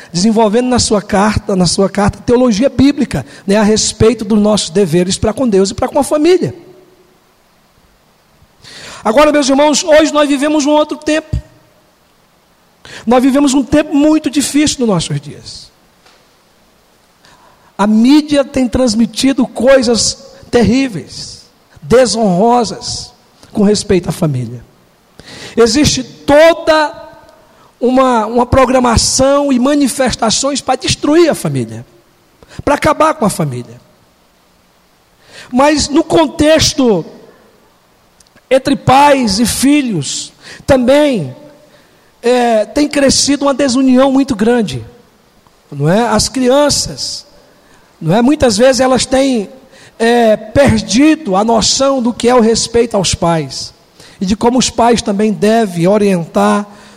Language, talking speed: Portuguese, 115 wpm